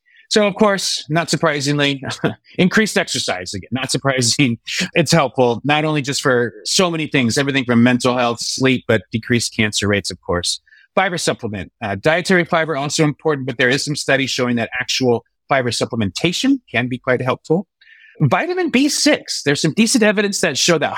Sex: male